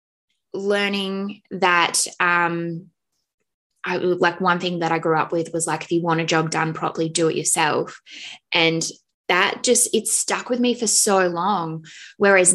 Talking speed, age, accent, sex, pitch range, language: 165 wpm, 10-29, Australian, female, 165-210 Hz, English